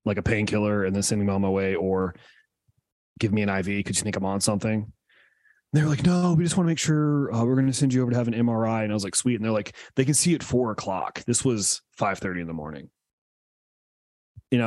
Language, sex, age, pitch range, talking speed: English, male, 30-49, 100-125 Hz, 260 wpm